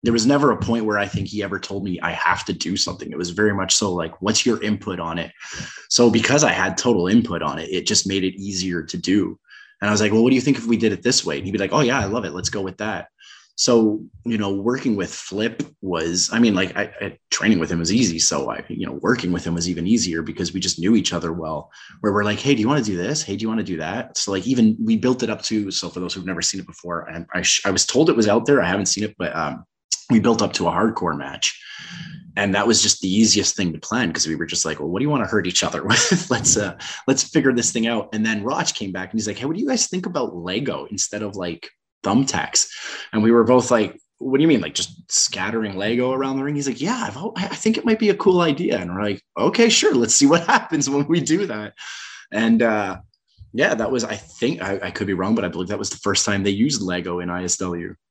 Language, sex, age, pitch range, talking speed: English, male, 20-39, 95-125 Hz, 285 wpm